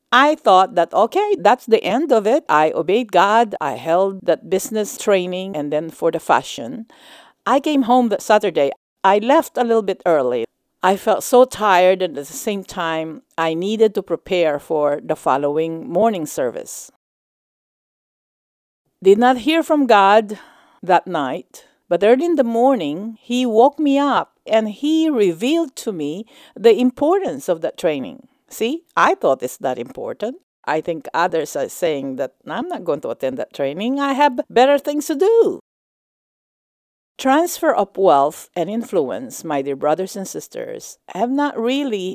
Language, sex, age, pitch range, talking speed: English, female, 50-69, 185-290 Hz, 165 wpm